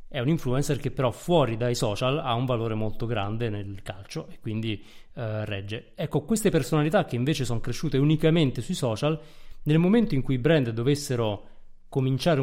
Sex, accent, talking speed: male, native, 180 wpm